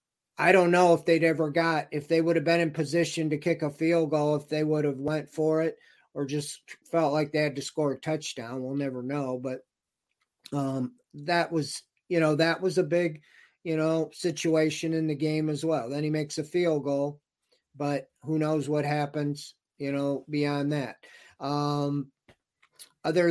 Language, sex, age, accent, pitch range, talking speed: English, male, 40-59, American, 150-175 Hz, 190 wpm